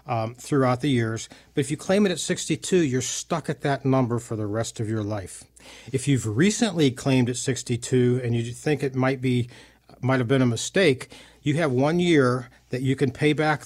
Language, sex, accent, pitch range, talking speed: English, male, American, 125-150 Hz, 210 wpm